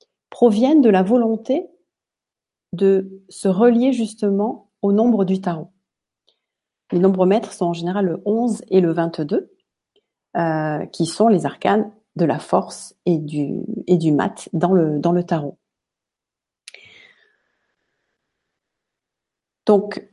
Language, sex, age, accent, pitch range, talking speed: French, female, 40-59, French, 180-220 Hz, 120 wpm